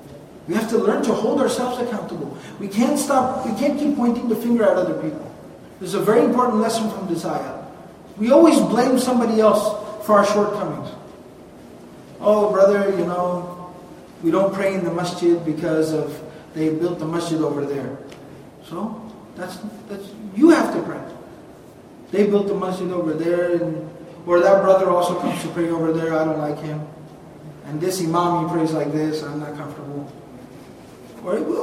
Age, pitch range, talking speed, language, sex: 30-49, 180-240 Hz, 175 wpm, English, male